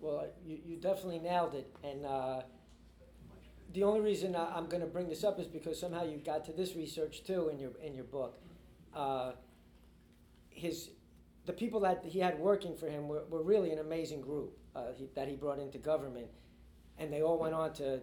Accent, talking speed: American, 200 wpm